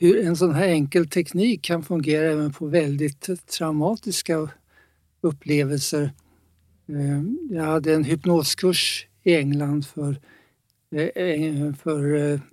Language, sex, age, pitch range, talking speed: Swedish, male, 60-79, 145-175 Hz, 100 wpm